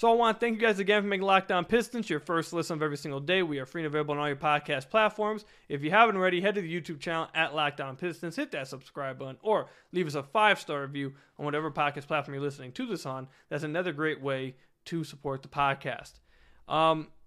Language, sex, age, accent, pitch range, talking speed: English, male, 20-39, American, 140-180 Hz, 240 wpm